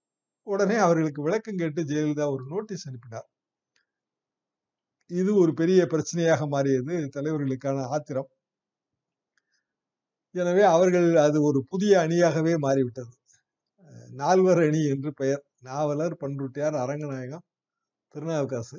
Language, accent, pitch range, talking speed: Tamil, native, 140-175 Hz, 95 wpm